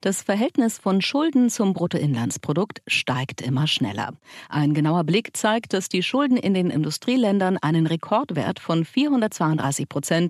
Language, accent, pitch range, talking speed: German, German, 145-215 Hz, 140 wpm